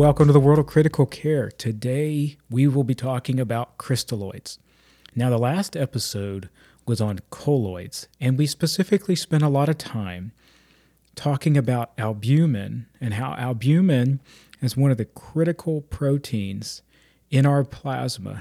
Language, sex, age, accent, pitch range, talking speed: English, male, 40-59, American, 115-145 Hz, 145 wpm